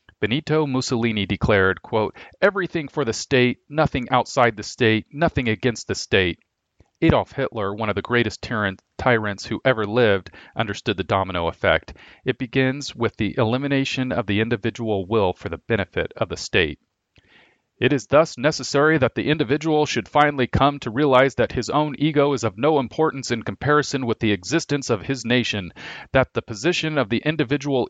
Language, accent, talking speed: English, American, 170 wpm